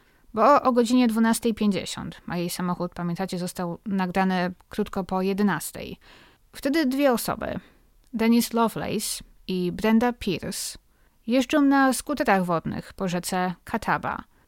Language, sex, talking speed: Polish, female, 115 wpm